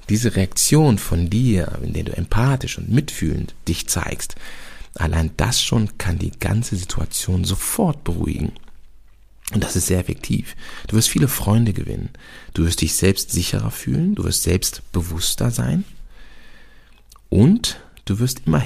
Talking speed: 150 wpm